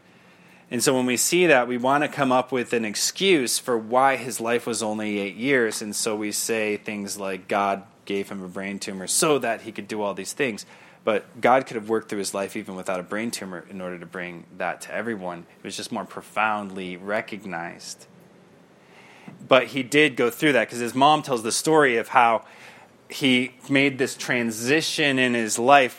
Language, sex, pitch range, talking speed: English, male, 105-130 Hz, 205 wpm